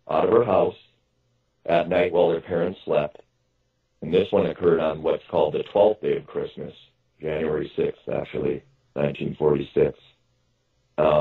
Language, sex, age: English, male, 40-59